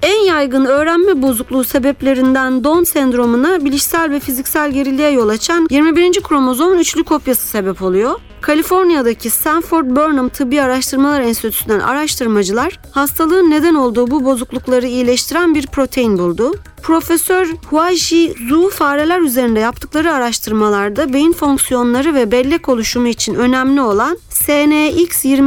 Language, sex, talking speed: Turkish, female, 120 wpm